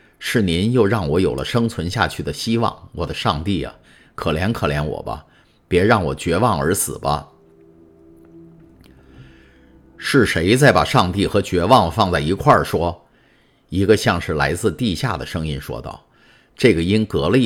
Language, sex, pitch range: Chinese, male, 80-110 Hz